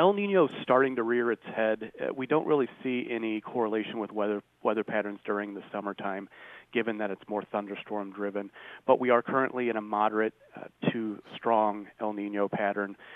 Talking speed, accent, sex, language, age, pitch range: 180 wpm, American, male, English, 30-49, 105-115 Hz